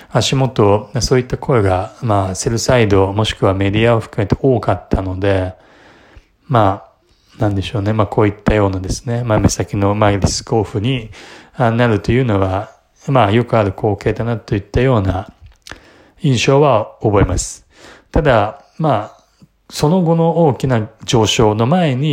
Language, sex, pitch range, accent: Japanese, male, 100-130 Hz, native